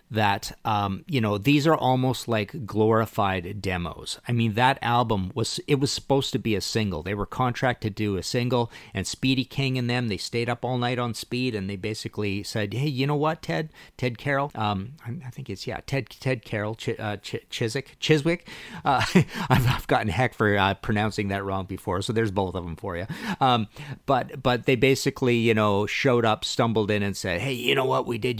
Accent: American